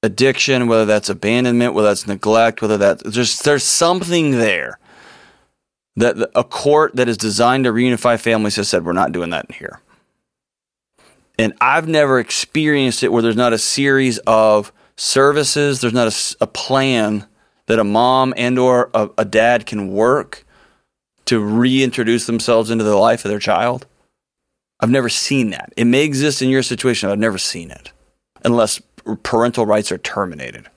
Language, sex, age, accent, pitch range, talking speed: English, male, 30-49, American, 110-130 Hz, 165 wpm